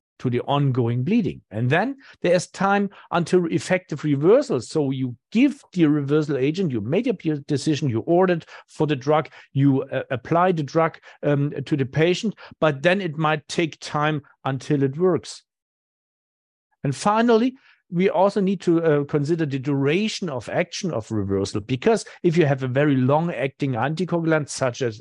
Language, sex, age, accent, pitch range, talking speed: English, male, 50-69, German, 135-170 Hz, 165 wpm